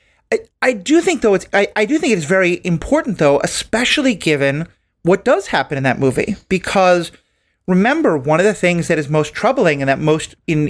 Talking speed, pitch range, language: 200 wpm, 150-200 Hz, English